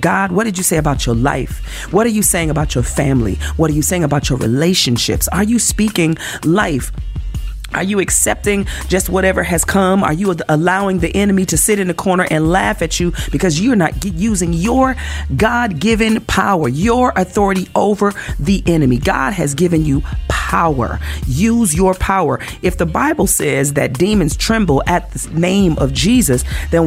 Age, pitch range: 40-59, 150-200 Hz